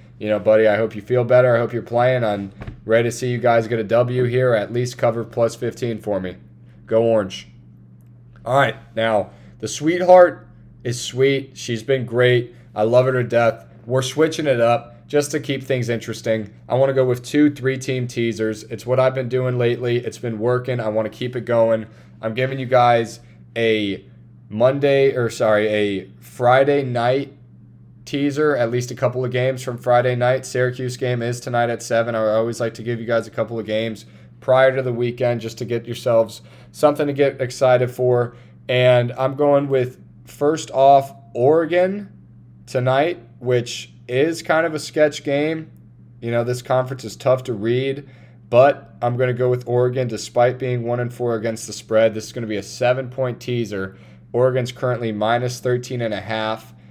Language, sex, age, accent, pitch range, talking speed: English, male, 20-39, American, 110-130 Hz, 190 wpm